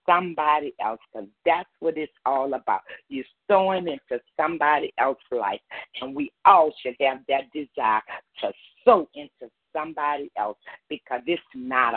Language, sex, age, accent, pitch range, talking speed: English, female, 40-59, American, 145-185 Hz, 145 wpm